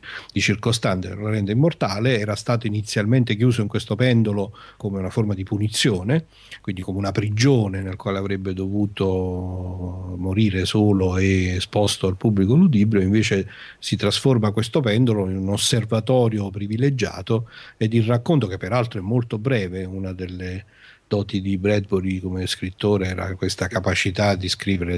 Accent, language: native, Italian